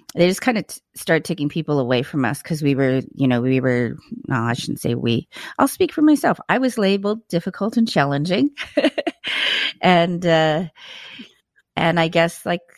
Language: English